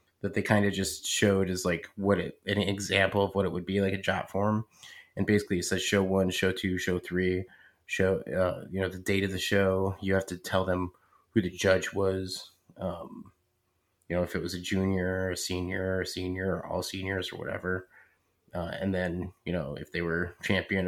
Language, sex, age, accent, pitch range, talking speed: English, male, 30-49, American, 90-100 Hz, 220 wpm